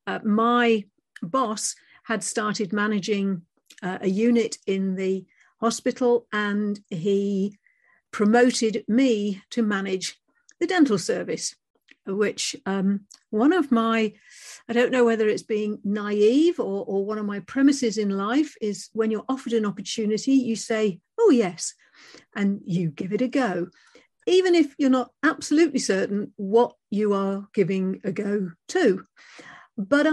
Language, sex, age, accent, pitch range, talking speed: English, female, 50-69, British, 200-245 Hz, 140 wpm